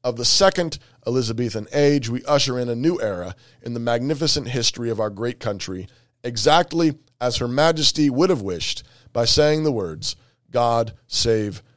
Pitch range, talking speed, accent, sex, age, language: 120-155 Hz, 165 wpm, American, male, 30-49, English